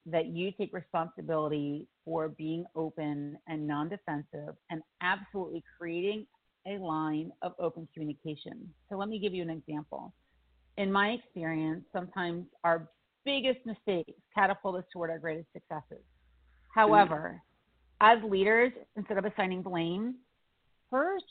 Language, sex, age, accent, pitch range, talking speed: English, female, 40-59, American, 165-220 Hz, 125 wpm